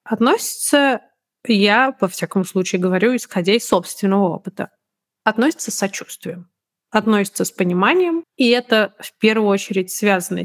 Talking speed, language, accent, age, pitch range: 120 wpm, Russian, native, 30-49, 190-245 Hz